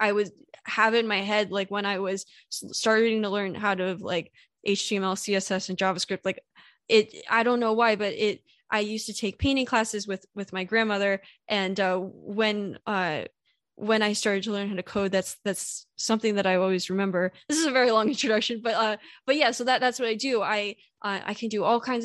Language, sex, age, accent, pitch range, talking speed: English, female, 10-29, American, 195-225 Hz, 215 wpm